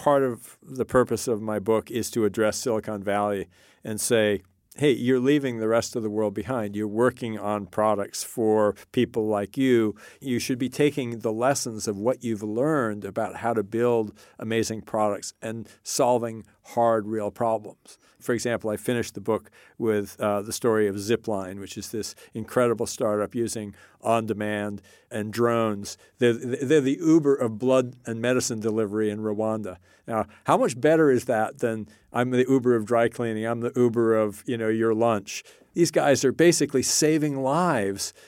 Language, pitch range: English, 110-130 Hz